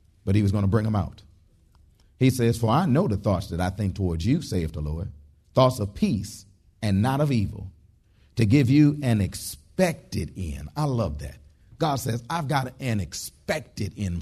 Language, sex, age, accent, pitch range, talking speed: English, male, 40-59, American, 100-145 Hz, 195 wpm